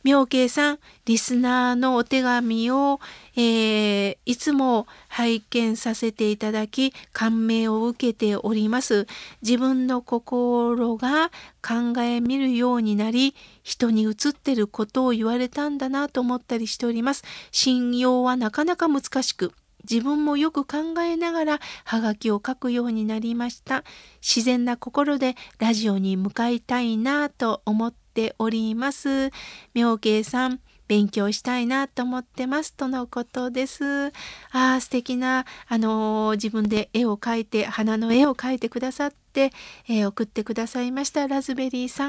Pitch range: 225-270 Hz